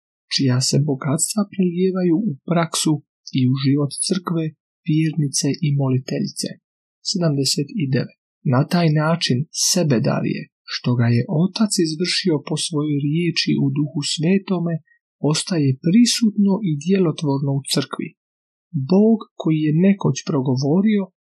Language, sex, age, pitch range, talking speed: Croatian, male, 40-59, 140-180 Hz, 115 wpm